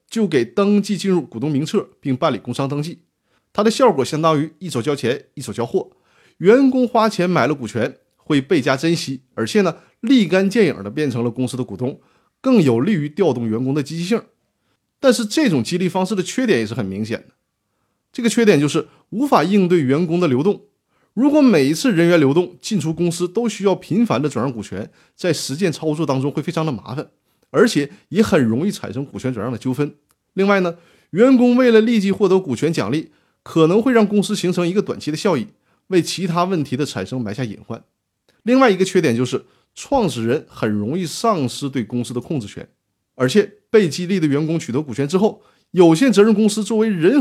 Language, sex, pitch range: Chinese, male, 135-205 Hz